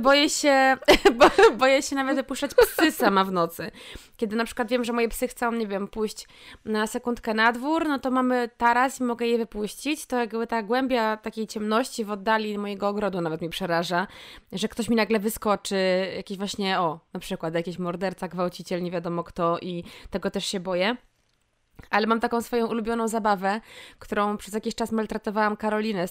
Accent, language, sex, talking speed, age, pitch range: native, Polish, female, 185 wpm, 20-39, 195-240 Hz